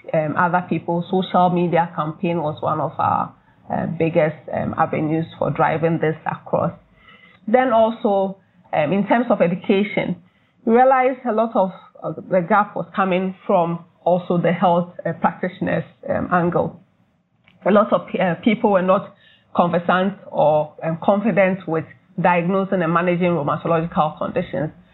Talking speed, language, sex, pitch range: 140 wpm, English, female, 165-195 Hz